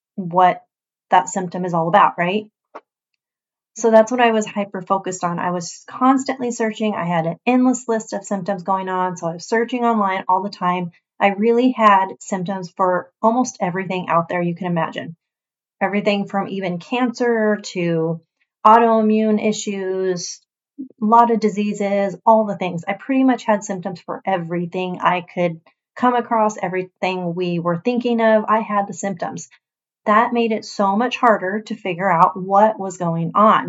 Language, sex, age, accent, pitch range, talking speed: English, female, 30-49, American, 185-220 Hz, 170 wpm